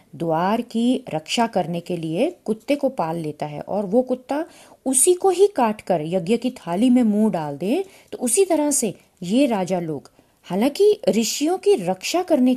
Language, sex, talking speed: Hindi, female, 170 wpm